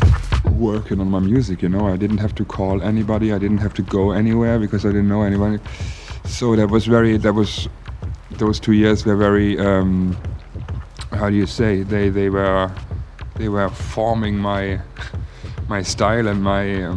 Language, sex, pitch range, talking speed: English, male, 90-105 Hz, 175 wpm